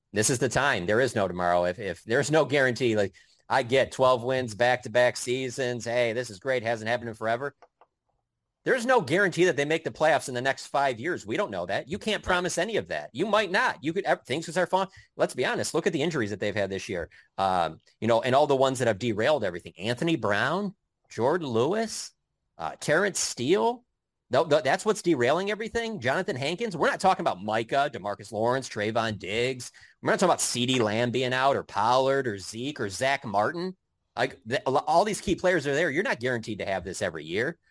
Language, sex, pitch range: English, male, 100-145 Hz